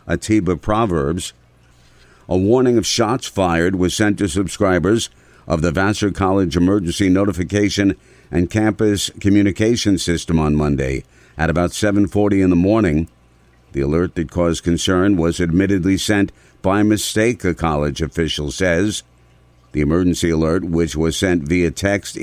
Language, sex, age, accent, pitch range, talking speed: English, male, 50-69, American, 80-100 Hz, 140 wpm